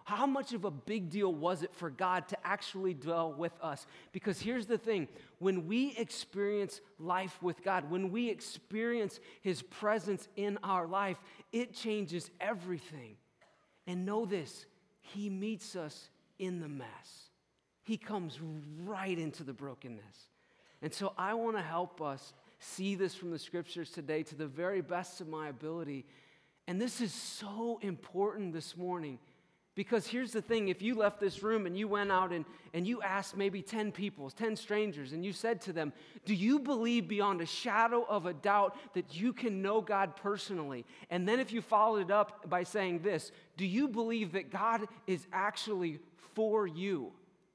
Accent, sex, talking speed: American, male, 175 wpm